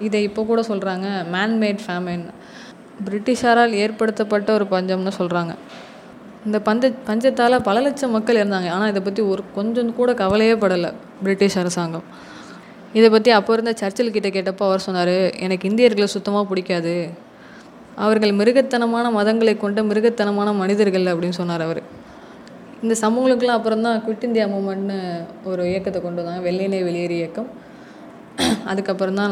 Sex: female